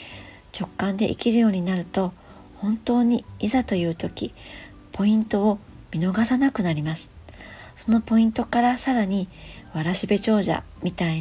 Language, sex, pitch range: Japanese, male, 170-225 Hz